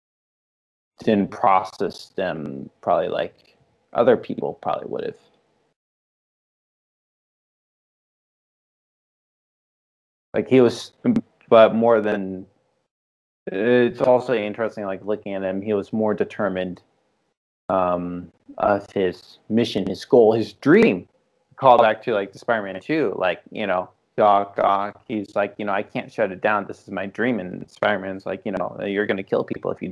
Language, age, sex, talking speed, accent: English, 20-39, male, 145 wpm, American